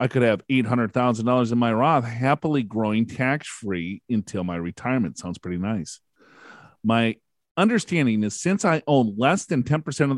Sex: male